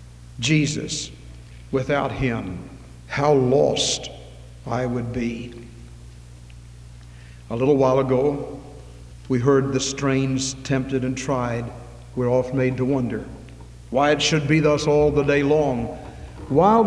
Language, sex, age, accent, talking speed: English, male, 60-79, American, 120 wpm